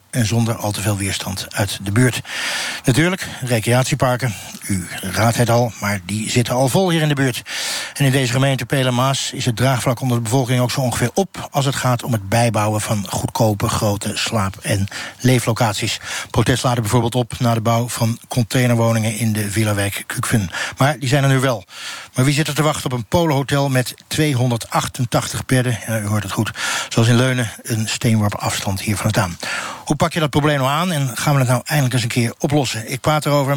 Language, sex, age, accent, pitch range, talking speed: Dutch, male, 60-79, Dutch, 115-135 Hz, 210 wpm